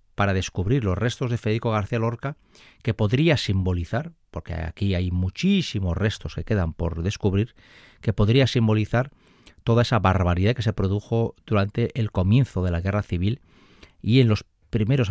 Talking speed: 160 wpm